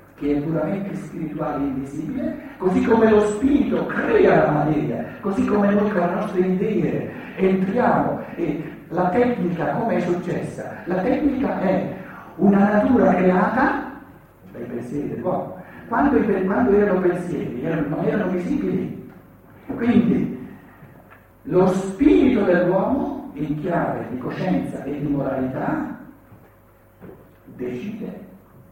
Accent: native